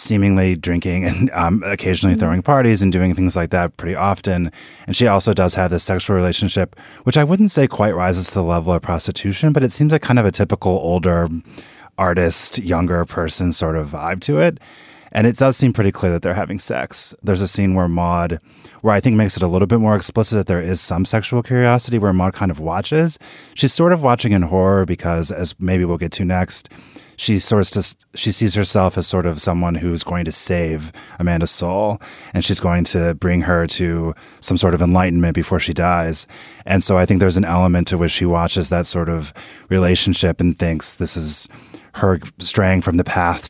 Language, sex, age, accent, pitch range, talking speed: English, male, 30-49, American, 85-105 Hz, 210 wpm